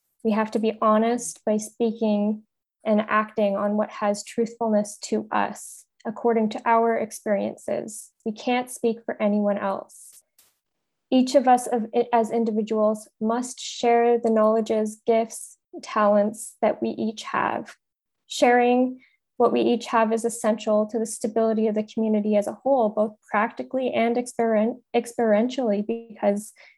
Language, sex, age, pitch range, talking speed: English, female, 10-29, 215-240 Hz, 135 wpm